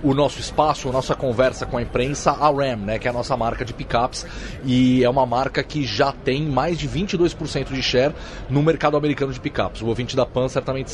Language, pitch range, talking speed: Portuguese, 120-145 Hz, 225 wpm